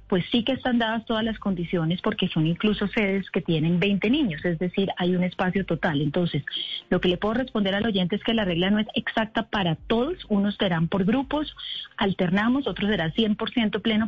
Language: Spanish